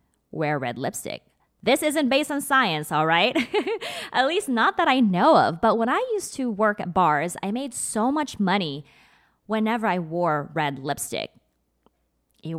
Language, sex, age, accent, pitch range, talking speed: English, female, 20-39, American, 155-240 Hz, 170 wpm